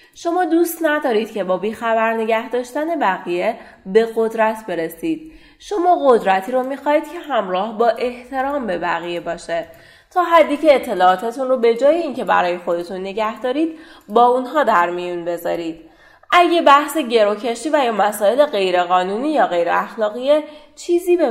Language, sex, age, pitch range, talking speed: Persian, female, 30-49, 195-300 Hz, 145 wpm